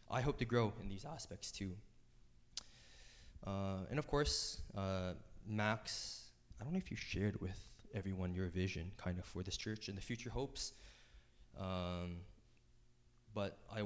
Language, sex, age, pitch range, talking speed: English, male, 20-39, 95-115 Hz, 155 wpm